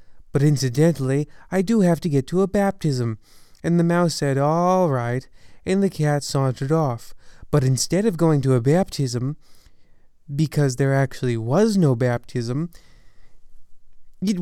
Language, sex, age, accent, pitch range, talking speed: English, male, 30-49, American, 130-175 Hz, 145 wpm